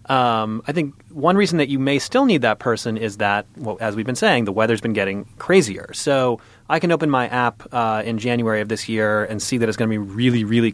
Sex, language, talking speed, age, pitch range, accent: male, English, 250 wpm, 30-49, 105-125 Hz, American